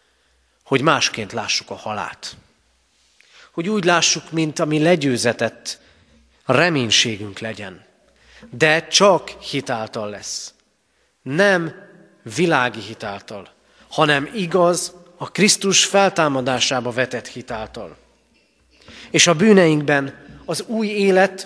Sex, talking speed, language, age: male, 90 wpm, Hungarian, 30-49